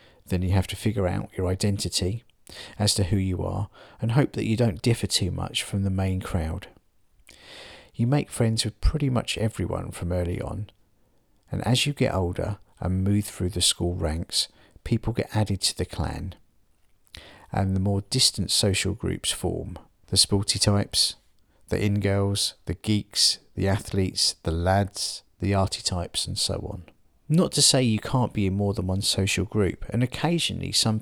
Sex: male